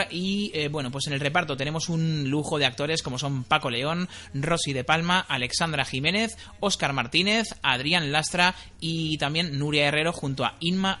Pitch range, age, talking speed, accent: 135-175 Hz, 30-49, 175 wpm, Spanish